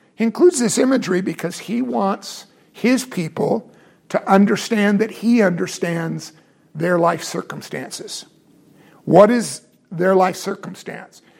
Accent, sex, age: American, male, 50-69